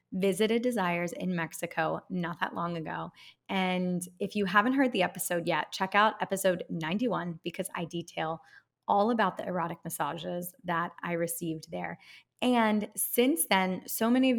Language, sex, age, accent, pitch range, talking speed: English, female, 20-39, American, 175-205 Hz, 160 wpm